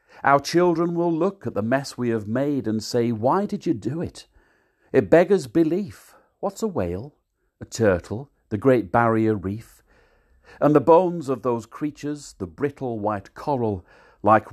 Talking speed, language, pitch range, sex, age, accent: 165 wpm, English, 105-140 Hz, male, 50-69, British